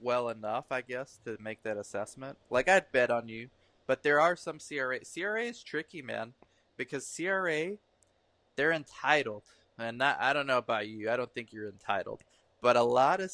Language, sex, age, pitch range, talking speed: English, male, 20-39, 110-130 Hz, 190 wpm